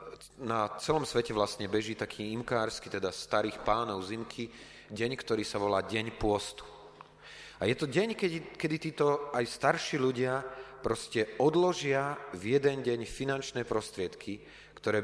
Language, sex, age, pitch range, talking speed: Slovak, male, 30-49, 100-135 Hz, 140 wpm